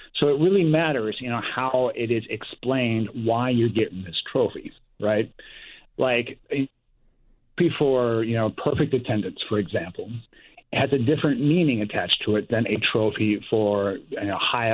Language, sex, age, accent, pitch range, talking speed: English, male, 40-59, American, 105-135 Hz, 145 wpm